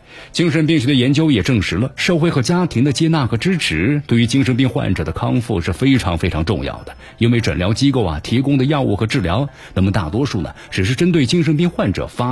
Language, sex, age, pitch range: Chinese, male, 50-69, 105-140 Hz